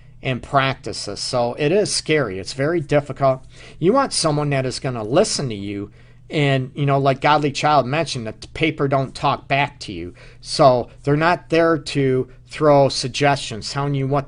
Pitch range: 125-150 Hz